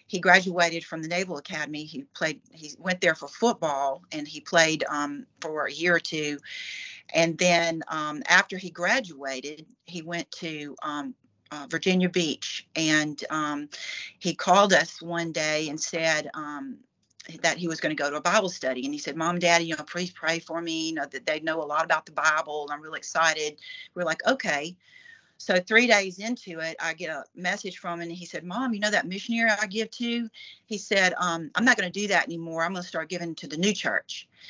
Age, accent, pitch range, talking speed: 40-59, American, 160-190 Hz, 215 wpm